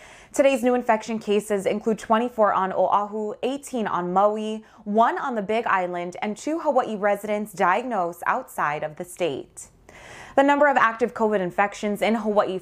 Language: English